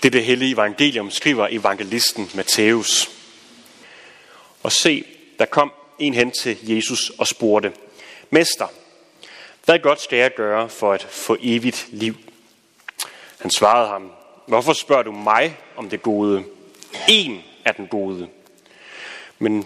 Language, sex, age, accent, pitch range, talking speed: Danish, male, 30-49, native, 105-150 Hz, 135 wpm